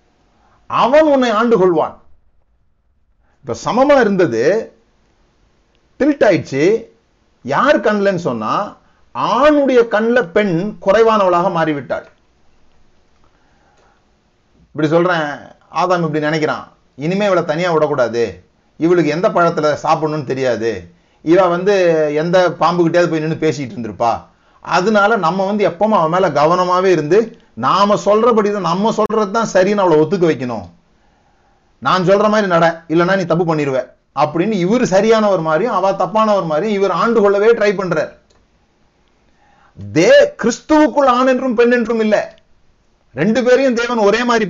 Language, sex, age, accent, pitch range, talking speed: Tamil, male, 30-49, native, 155-215 Hz, 40 wpm